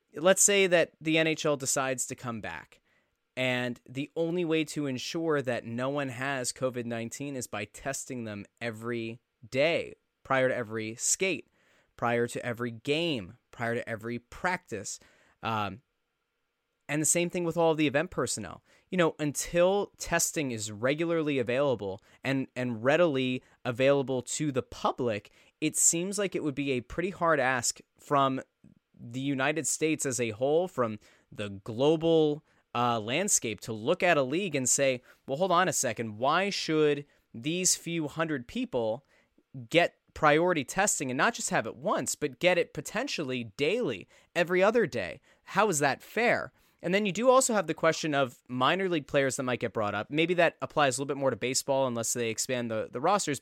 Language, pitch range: English, 120-165 Hz